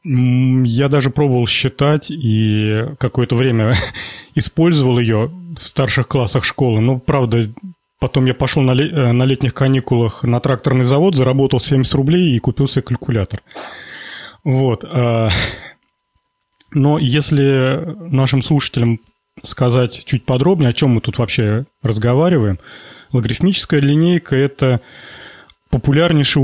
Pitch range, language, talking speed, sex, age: 120-145 Hz, Russian, 115 wpm, male, 30-49